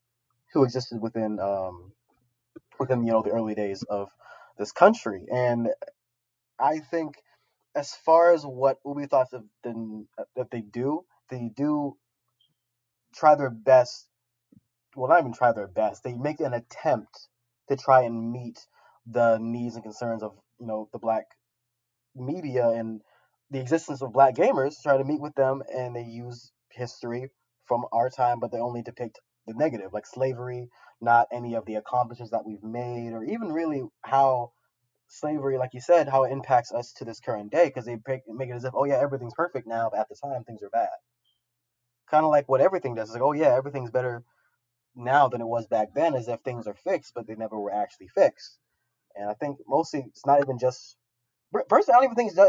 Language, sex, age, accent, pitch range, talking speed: English, male, 20-39, American, 115-135 Hz, 190 wpm